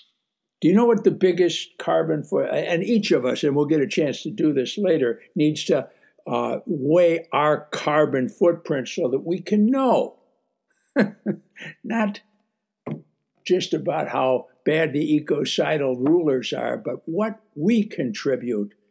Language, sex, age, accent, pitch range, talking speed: English, male, 60-79, American, 150-215 Hz, 145 wpm